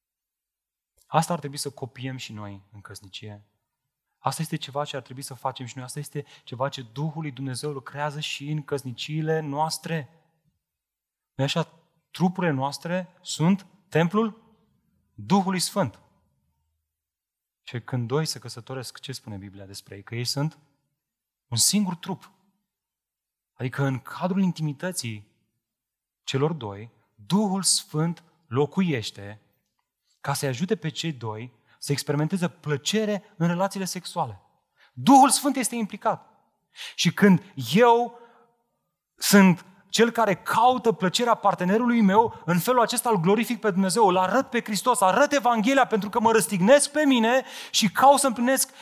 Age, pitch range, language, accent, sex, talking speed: 30-49, 140-230 Hz, Romanian, native, male, 140 wpm